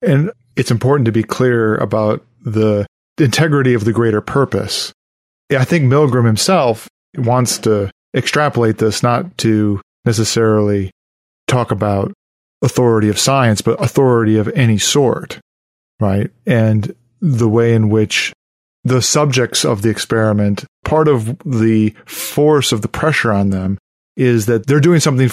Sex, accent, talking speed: male, American, 140 wpm